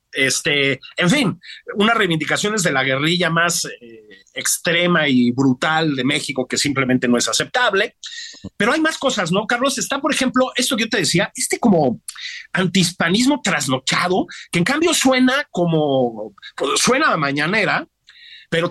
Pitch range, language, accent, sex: 155-255 Hz, Spanish, Mexican, male